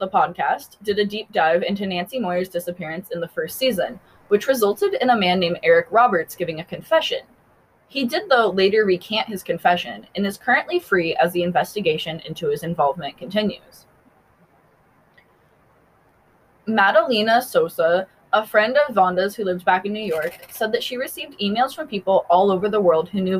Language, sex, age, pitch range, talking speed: English, female, 20-39, 175-225 Hz, 175 wpm